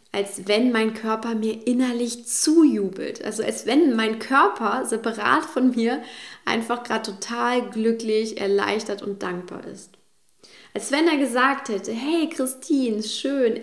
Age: 20-39